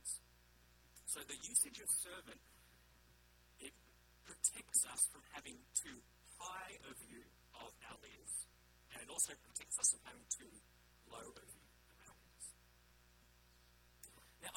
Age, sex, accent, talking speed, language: 40-59, male, Australian, 130 wpm, English